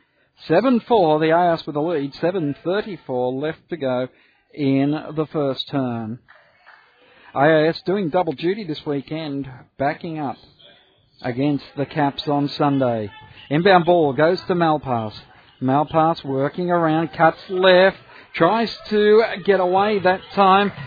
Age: 50-69